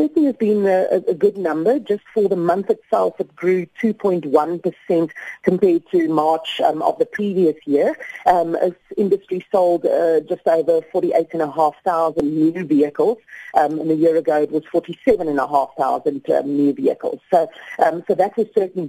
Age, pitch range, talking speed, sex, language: 40-59, 160-205 Hz, 185 wpm, female, English